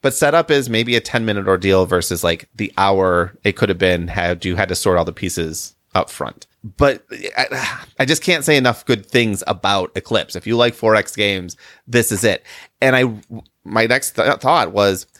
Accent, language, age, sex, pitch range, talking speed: American, English, 30-49, male, 95-130 Hz, 200 wpm